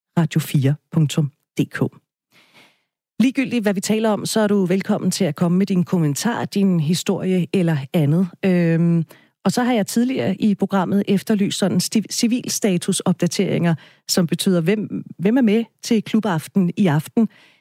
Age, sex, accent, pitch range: 40-59, female, native, 165-210 Hz